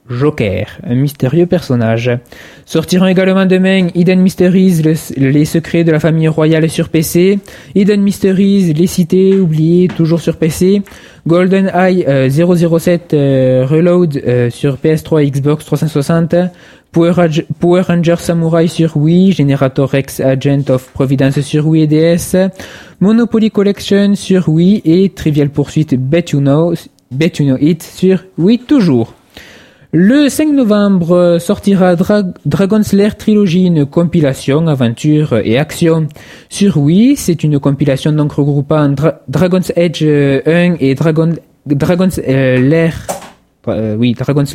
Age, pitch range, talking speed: 20-39, 140-180 Hz, 130 wpm